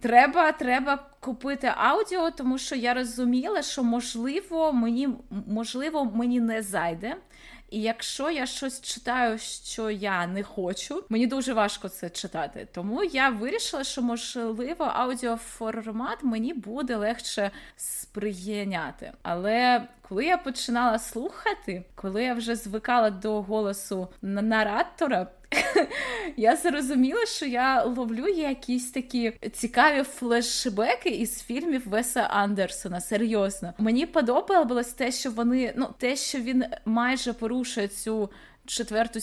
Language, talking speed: Ukrainian, 120 wpm